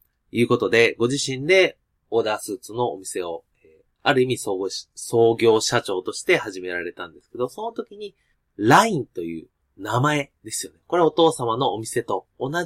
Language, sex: Japanese, male